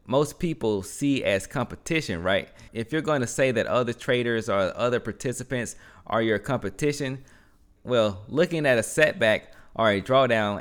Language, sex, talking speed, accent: English, male, 160 wpm, American